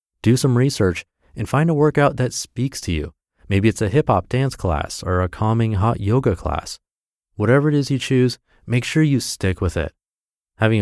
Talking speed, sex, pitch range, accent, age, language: 200 wpm, male, 85-115 Hz, American, 30-49, English